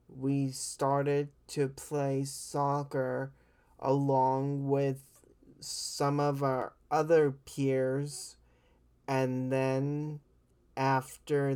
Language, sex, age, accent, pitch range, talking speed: English, male, 20-39, American, 130-145 Hz, 80 wpm